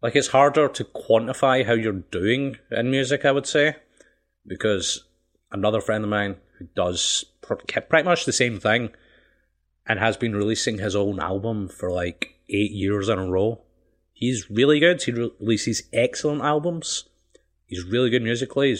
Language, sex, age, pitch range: English, male, 30-49, 100-125 Hz